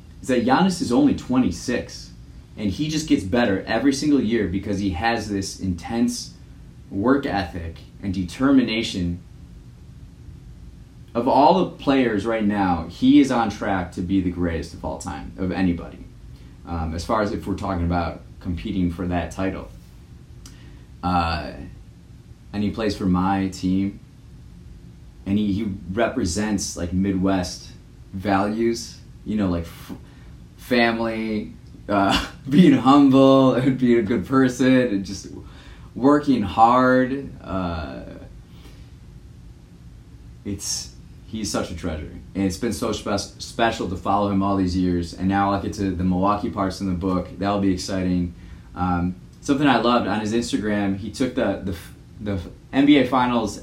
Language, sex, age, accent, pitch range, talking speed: English, male, 30-49, American, 90-115 Hz, 145 wpm